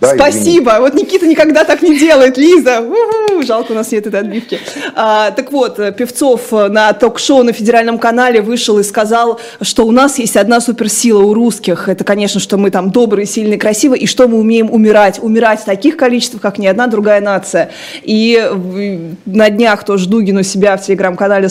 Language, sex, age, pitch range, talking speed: Russian, female, 20-39, 195-240 Hz, 185 wpm